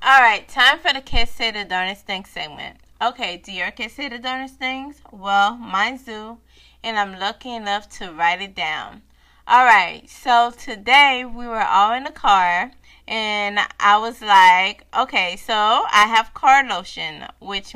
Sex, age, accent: female, 20-39, American